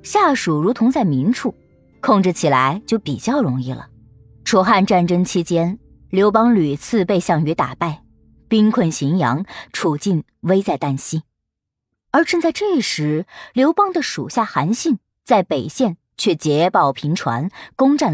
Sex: male